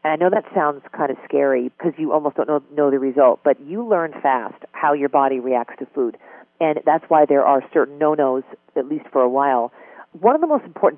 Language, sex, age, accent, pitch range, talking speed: English, female, 40-59, American, 135-180 Hz, 235 wpm